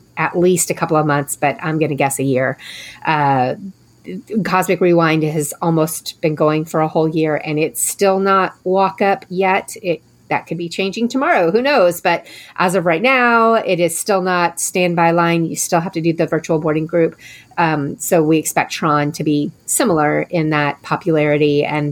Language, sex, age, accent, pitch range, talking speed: English, female, 30-49, American, 155-185 Hz, 190 wpm